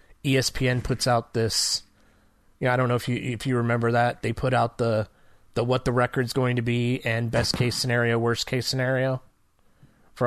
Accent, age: American, 30-49